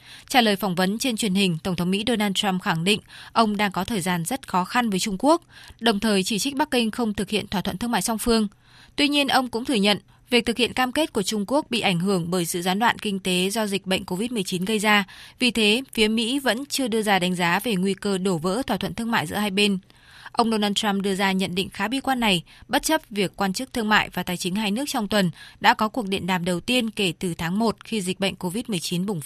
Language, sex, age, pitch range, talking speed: Vietnamese, female, 20-39, 185-230 Hz, 270 wpm